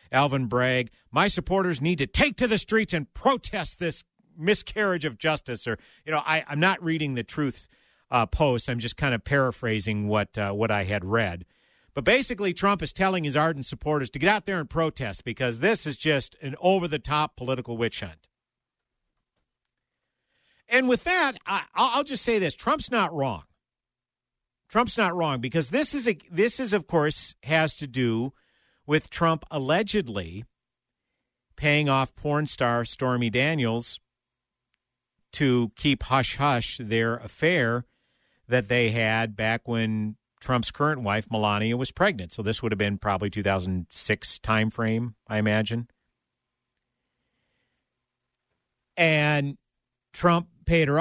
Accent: American